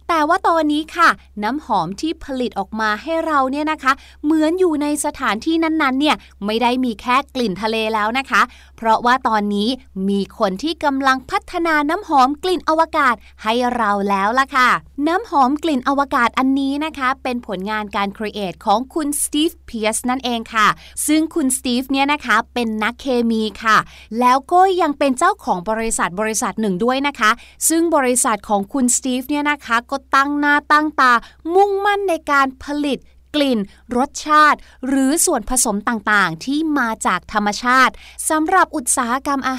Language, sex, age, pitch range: Thai, female, 20-39, 235-310 Hz